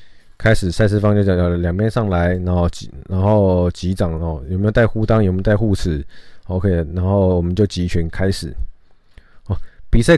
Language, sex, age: Chinese, male, 20-39